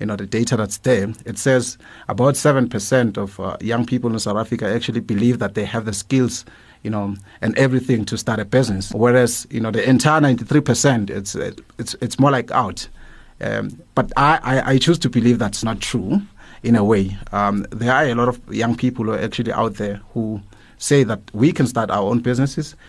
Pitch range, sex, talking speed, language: 110-130 Hz, male, 210 wpm, English